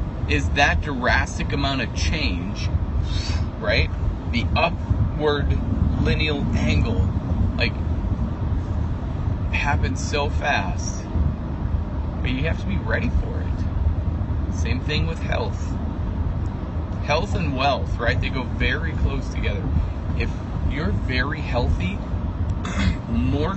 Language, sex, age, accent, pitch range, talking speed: English, male, 30-49, American, 85-95 Hz, 105 wpm